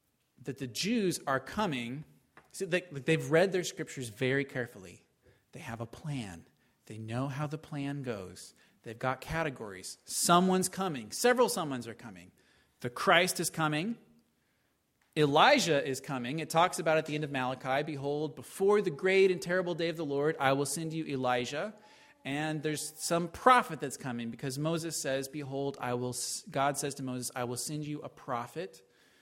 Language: English